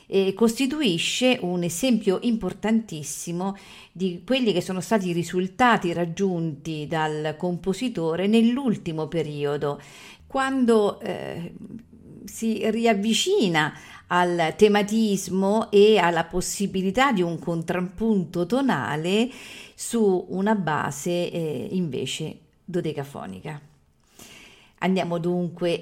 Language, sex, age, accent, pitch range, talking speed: Italian, female, 50-69, native, 155-210 Hz, 90 wpm